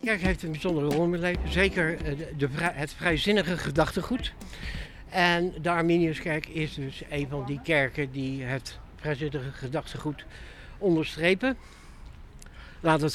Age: 60-79